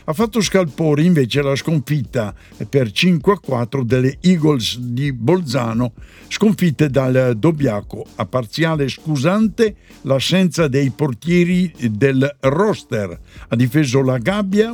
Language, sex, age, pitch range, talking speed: Italian, male, 60-79, 130-175 Hz, 120 wpm